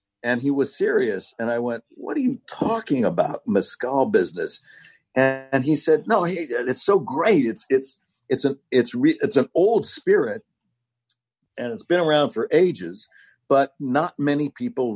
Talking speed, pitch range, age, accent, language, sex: 170 wpm, 115-175 Hz, 60-79, American, English, male